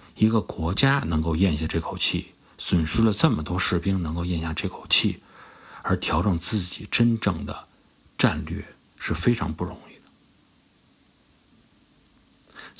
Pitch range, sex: 80-105 Hz, male